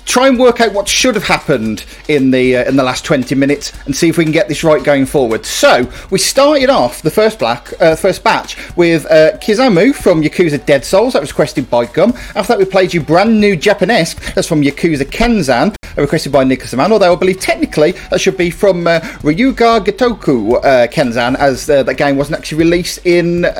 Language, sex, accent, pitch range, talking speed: English, male, British, 140-200 Hz, 210 wpm